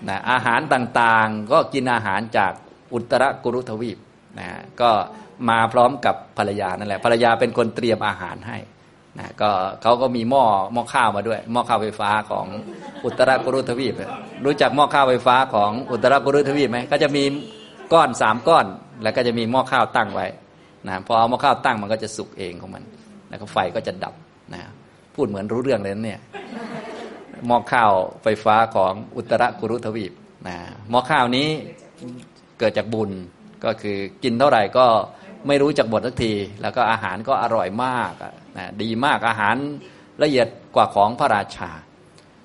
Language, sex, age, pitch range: Thai, male, 20-39, 105-140 Hz